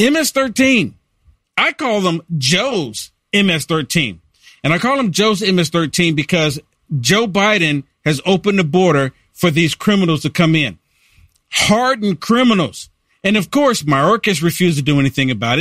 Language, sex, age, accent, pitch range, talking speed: English, male, 50-69, American, 150-215 Hz, 140 wpm